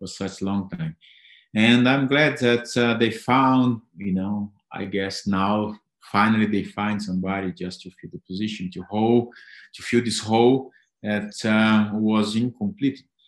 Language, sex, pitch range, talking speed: English, male, 105-130 Hz, 165 wpm